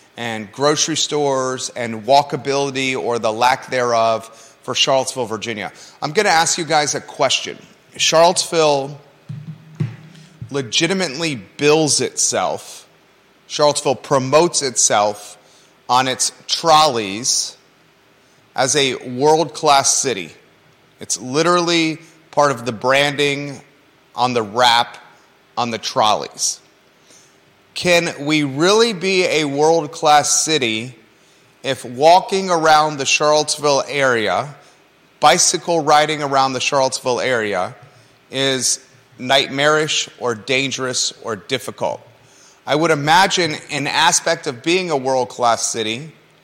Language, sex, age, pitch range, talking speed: English, male, 30-49, 125-155 Hz, 105 wpm